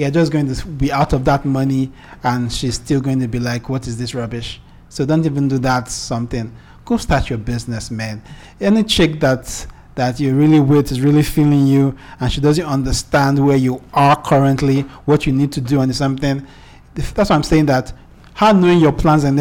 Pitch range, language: 130-150 Hz, English